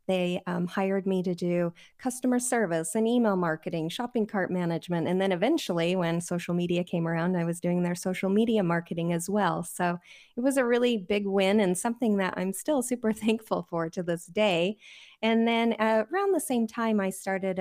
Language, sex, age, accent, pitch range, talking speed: English, female, 30-49, American, 180-220 Hz, 200 wpm